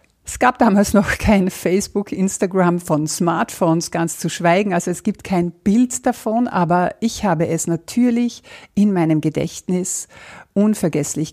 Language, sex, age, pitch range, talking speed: German, female, 60-79, 175-220 Hz, 145 wpm